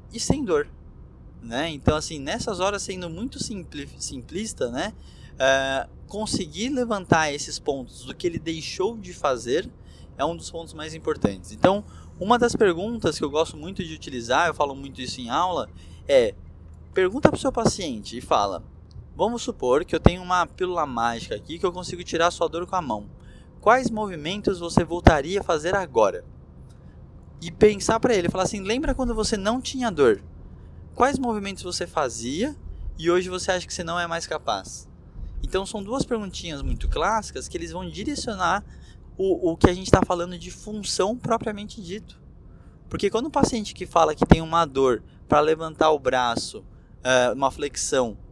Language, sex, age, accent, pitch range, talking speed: Portuguese, male, 20-39, Brazilian, 140-215 Hz, 175 wpm